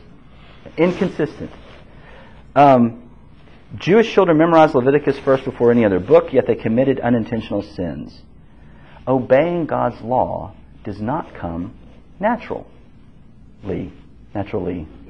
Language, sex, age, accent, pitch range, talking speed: English, male, 40-59, American, 80-135 Hz, 95 wpm